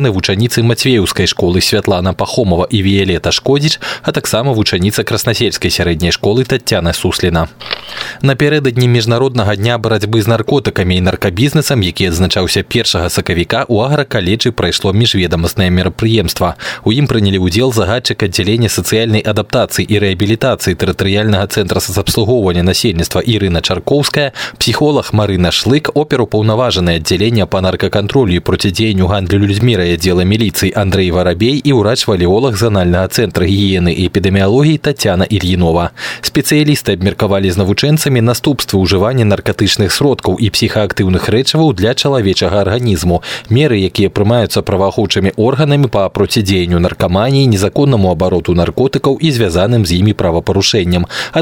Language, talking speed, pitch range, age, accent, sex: Russian, 125 wpm, 95-120 Hz, 20-39, native, male